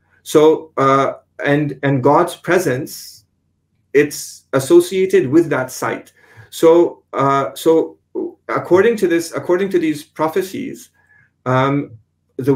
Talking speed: 110 wpm